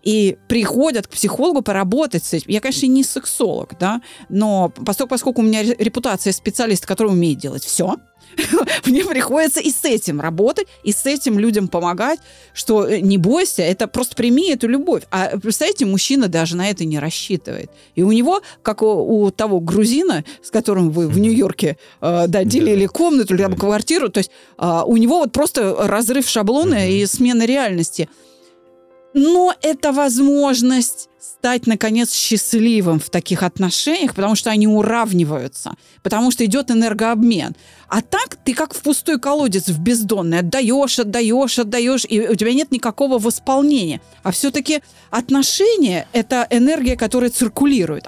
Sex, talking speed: female, 150 wpm